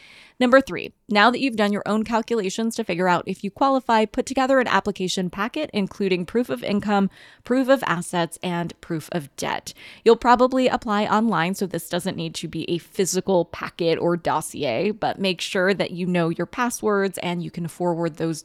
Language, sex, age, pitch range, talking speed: English, female, 20-39, 180-245 Hz, 190 wpm